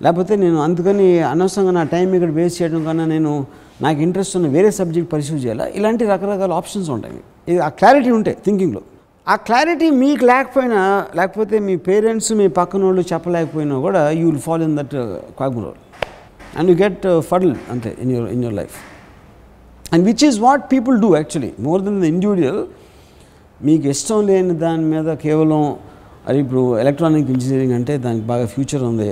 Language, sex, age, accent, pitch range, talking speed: Telugu, male, 60-79, native, 145-195 Hz, 165 wpm